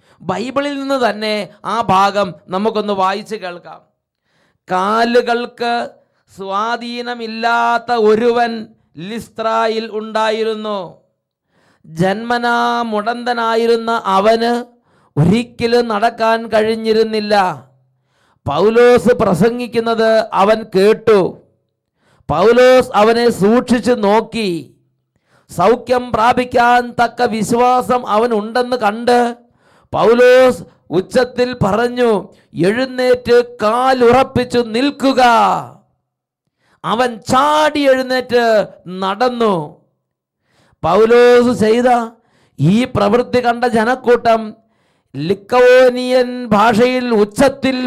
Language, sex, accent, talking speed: English, male, Indian, 60 wpm